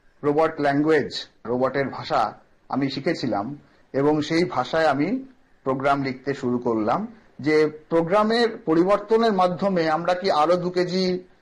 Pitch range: 140-175 Hz